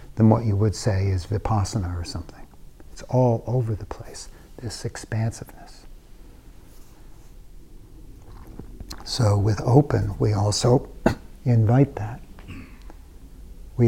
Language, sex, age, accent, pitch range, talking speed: English, male, 50-69, American, 95-120 Hz, 105 wpm